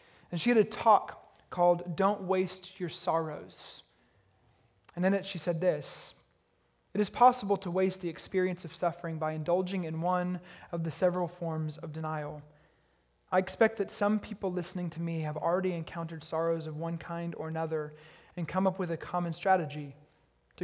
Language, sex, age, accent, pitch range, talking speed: English, male, 20-39, American, 155-185 Hz, 175 wpm